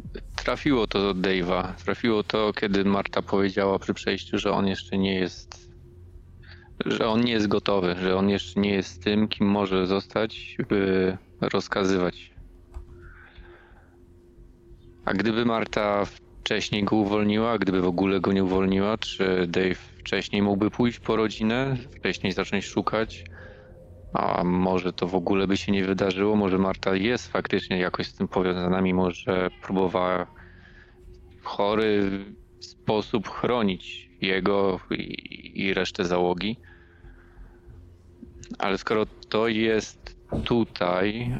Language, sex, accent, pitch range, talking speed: Polish, male, native, 90-100 Hz, 130 wpm